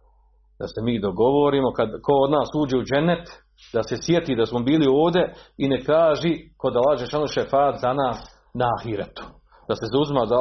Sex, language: male, Croatian